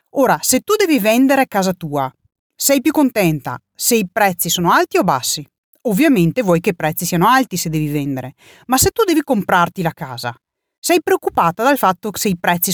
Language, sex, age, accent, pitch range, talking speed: Italian, female, 40-59, native, 170-265 Hz, 200 wpm